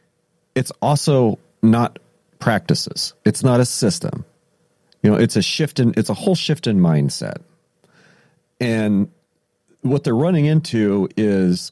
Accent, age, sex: American, 40-59, male